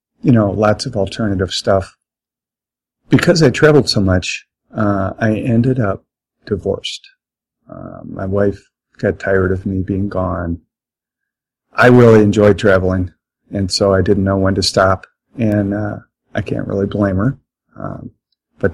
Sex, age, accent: male, 40-59, American